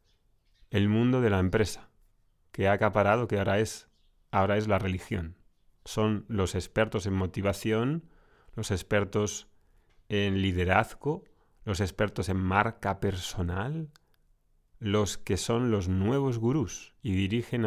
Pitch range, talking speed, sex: 95-115 Hz, 120 wpm, male